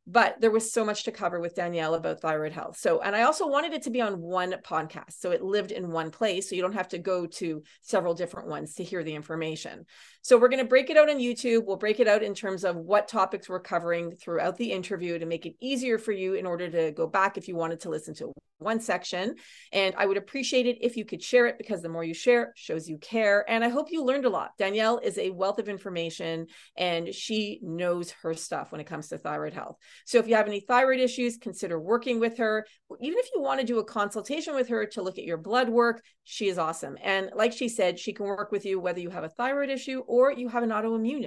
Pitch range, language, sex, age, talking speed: 175-240 Hz, English, female, 30-49, 255 wpm